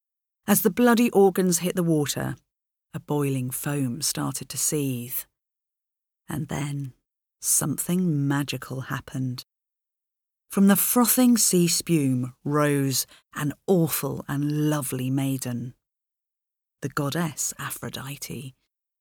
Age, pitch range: 40-59, 135-195 Hz